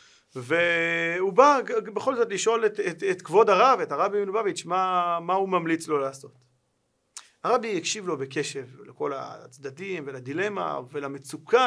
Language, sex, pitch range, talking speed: Hebrew, male, 140-205 Hz, 140 wpm